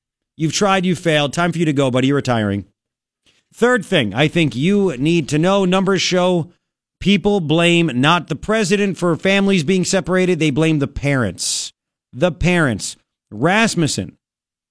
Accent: American